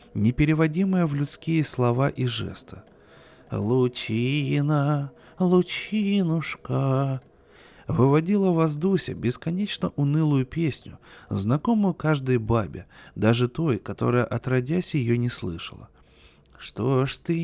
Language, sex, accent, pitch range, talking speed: Russian, male, native, 115-160 Hz, 95 wpm